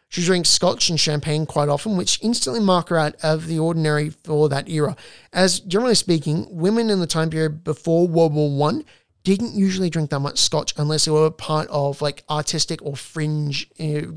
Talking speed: 195 wpm